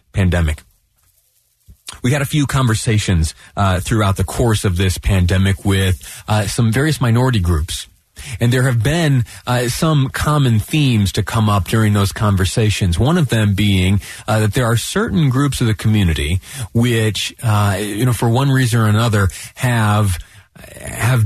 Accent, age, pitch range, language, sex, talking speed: American, 30-49, 100-125 Hz, English, male, 160 wpm